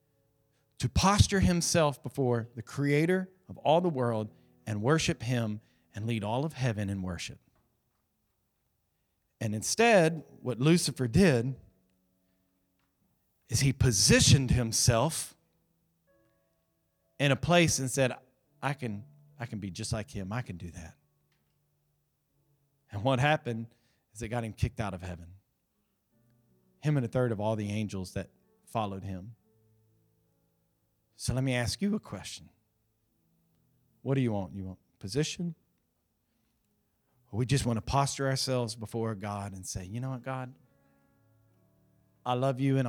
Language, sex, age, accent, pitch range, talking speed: English, male, 40-59, American, 100-135 Hz, 140 wpm